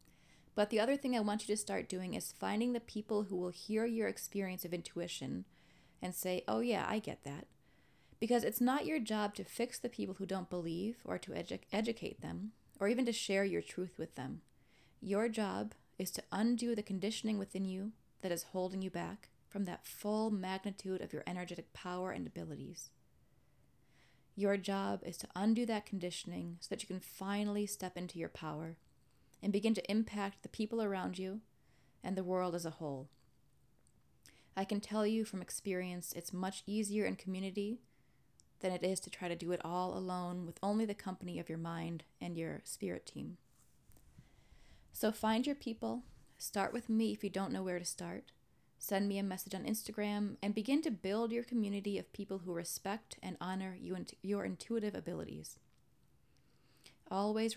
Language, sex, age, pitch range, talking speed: English, female, 30-49, 180-215 Hz, 180 wpm